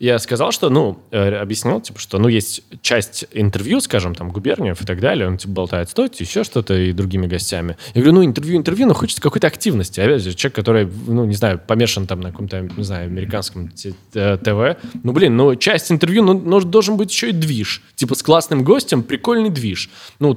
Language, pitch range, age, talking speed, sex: Russian, 100-135 Hz, 20-39, 205 wpm, male